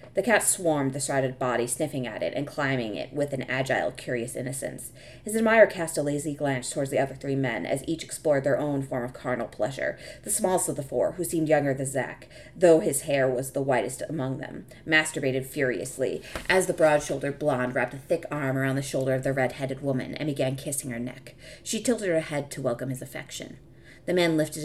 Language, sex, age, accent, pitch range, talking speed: English, female, 30-49, American, 130-160 Hz, 215 wpm